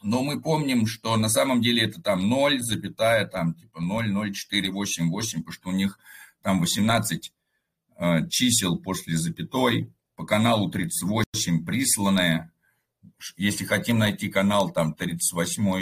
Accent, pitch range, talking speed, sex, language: native, 90-120 Hz, 140 wpm, male, Russian